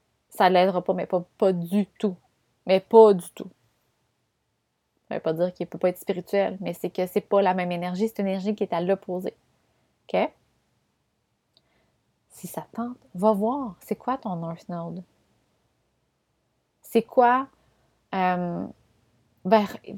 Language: French